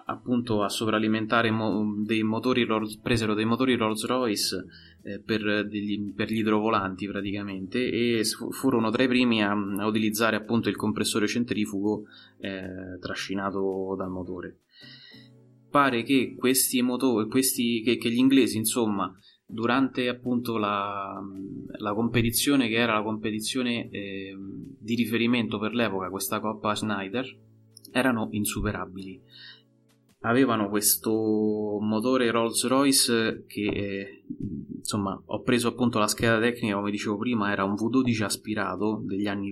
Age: 20-39